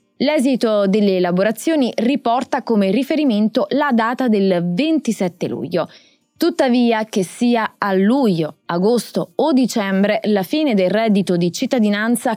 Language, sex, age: Italian, female, 20-39